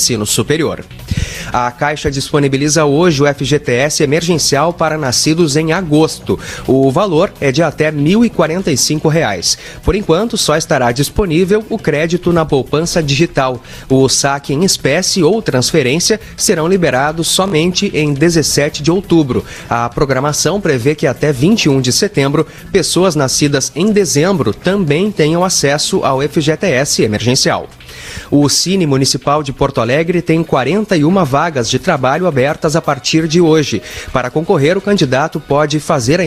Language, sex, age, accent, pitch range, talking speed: Portuguese, male, 30-49, Brazilian, 140-175 Hz, 135 wpm